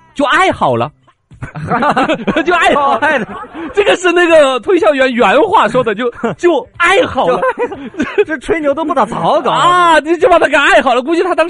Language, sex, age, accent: Chinese, male, 30-49, native